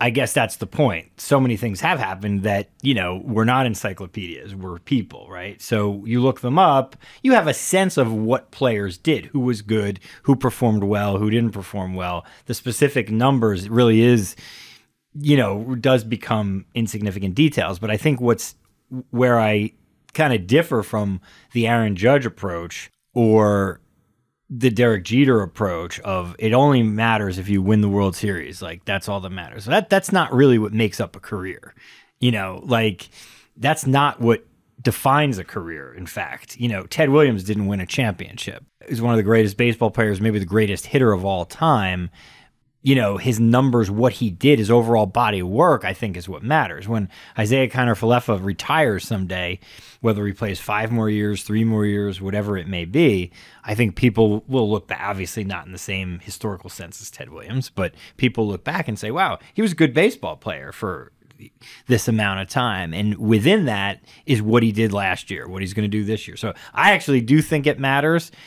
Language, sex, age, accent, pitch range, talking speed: English, male, 30-49, American, 100-125 Hz, 195 wpm